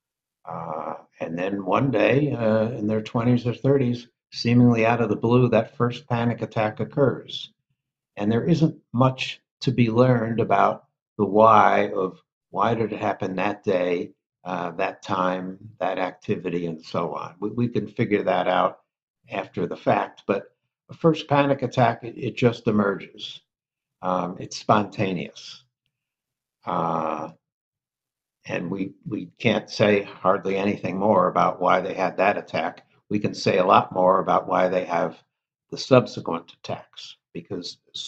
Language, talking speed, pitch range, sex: English, 155 wpm, 95-130 Hz, male